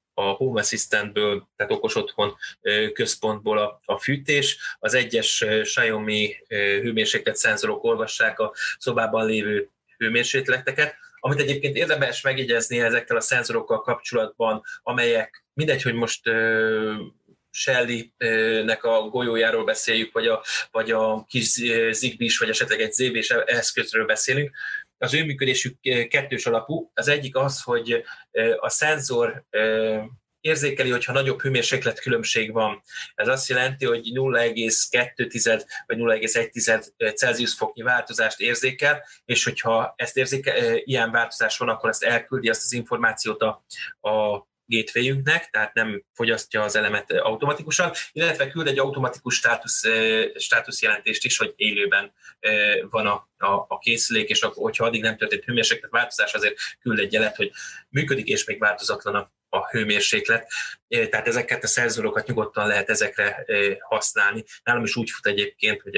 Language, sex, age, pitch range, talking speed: Hungarian, male, 20-39, 110-165 Hz, 130 wpm